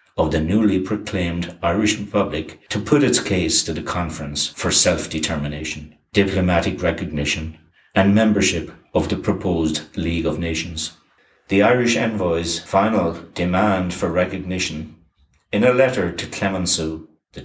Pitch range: 80-95 Hz